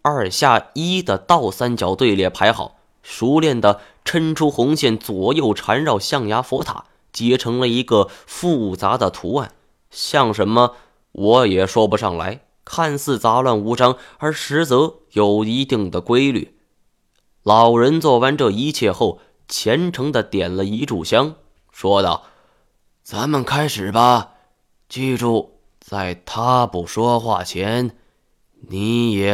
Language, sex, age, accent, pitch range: Chinese, male, 20-39, native, 100-145 Hz